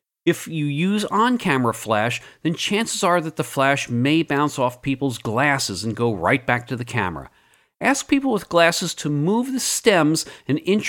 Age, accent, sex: 40-59, American, male